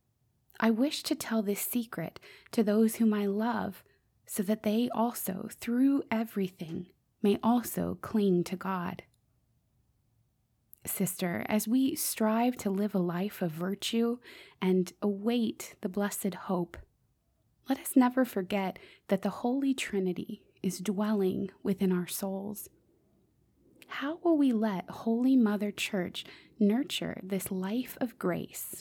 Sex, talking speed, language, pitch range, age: female, 130 wpm, English, 180-220 Hz, 20-39